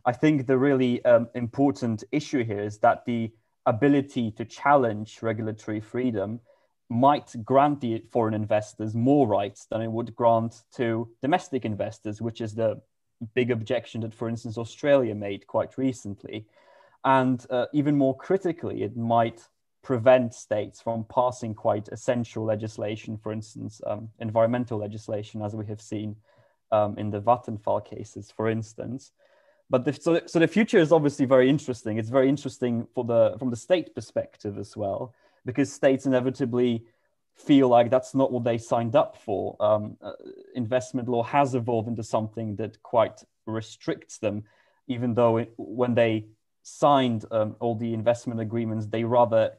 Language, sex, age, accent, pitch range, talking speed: German, male, 20-39, British, 110-130 Hz, 160 wpm